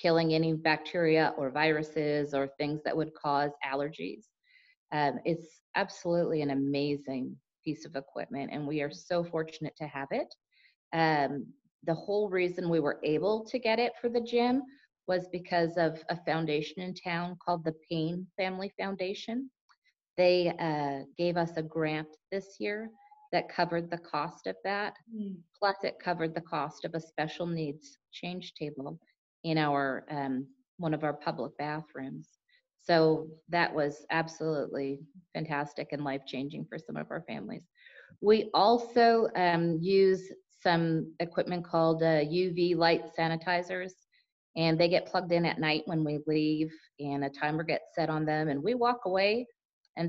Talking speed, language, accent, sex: 155 wpm, English, American, female